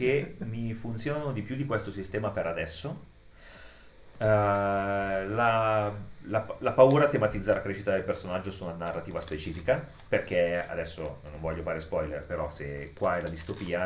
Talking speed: 160 wpm